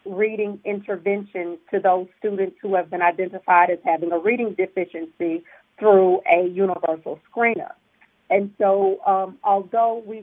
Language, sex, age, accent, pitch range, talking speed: English, female, 40-59, American, 190-215 Hz, 135 wpm